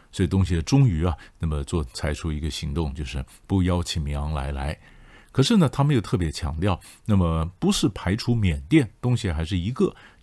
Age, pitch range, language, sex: 50-69, 80-100 Hz, Chinese, male